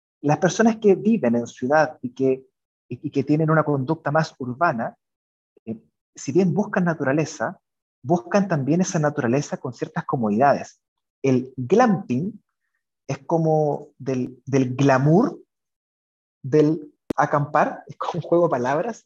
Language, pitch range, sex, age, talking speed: Spanish, 130-170 Hz, male, 30-49, 135 wpm